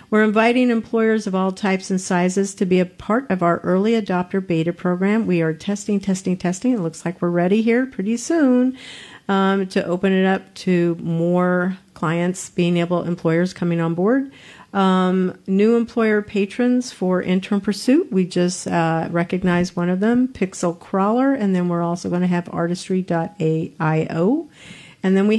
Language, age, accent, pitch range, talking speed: English, 50-69, American, 180-230 Hz, 170 wpm